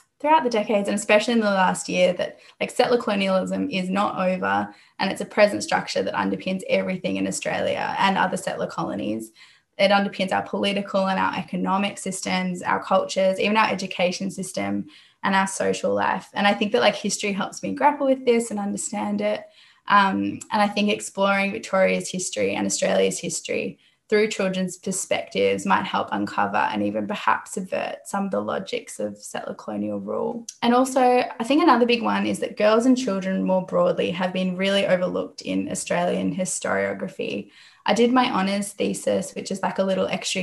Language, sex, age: English, female, 10-29